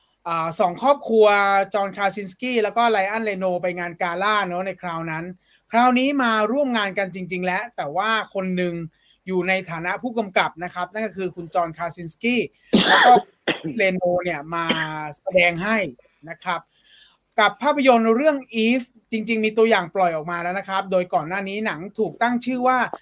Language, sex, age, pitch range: English, male, 30-49, 180-230 Hz